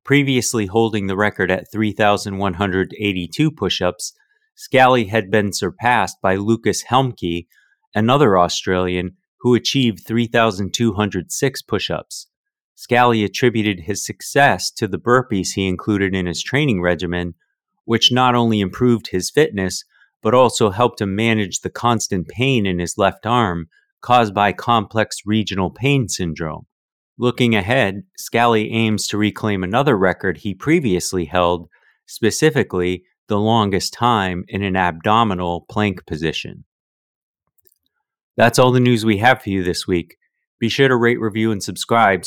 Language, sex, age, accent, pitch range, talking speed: English, male, 30-49, American, 95-120 Hz, 135 wpm